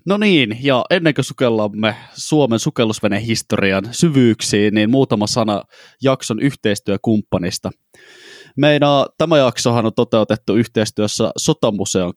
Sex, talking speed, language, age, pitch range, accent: male, 105 wpm, Finnish, 20-39, 105-135 Hz, native